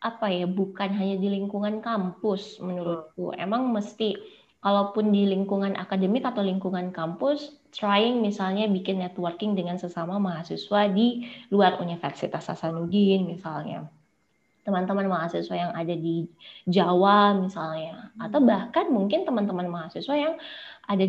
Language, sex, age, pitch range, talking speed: Indonesian, female, 20-39, 185-230 Hz, 120 wpm